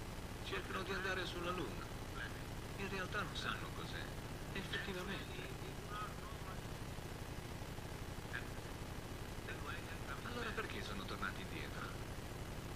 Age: 50-69